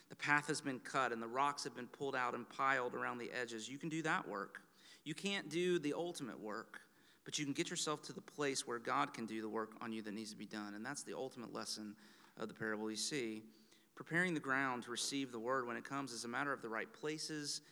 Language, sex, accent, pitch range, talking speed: English, male, American, 130-185 Hz, 255 wpm